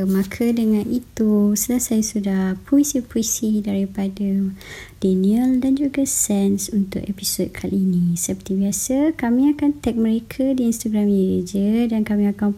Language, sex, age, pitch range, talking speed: Malay, male, 20-39, 195-225 Hz, 130 wpm